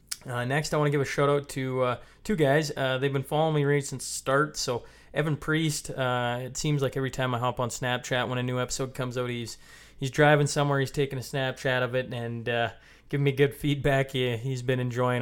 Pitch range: 120-140 Hz